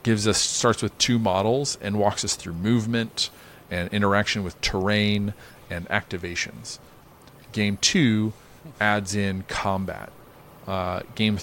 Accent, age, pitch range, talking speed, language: American, 40-59, 90-110 Hz, 125 wpm, English